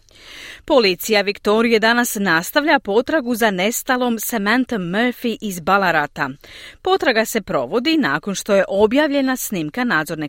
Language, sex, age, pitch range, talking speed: Croatian, female, 40-59, 190-260 Hz, 115 wpm